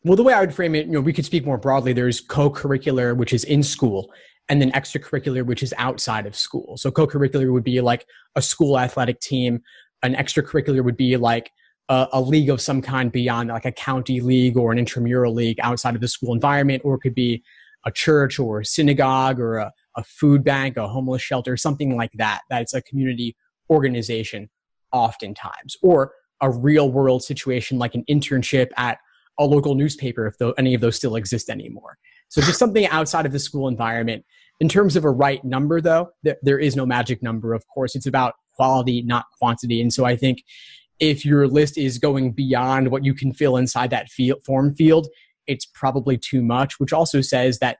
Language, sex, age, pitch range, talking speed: English, male, 30-49, 125-145 Hz, 200 wpm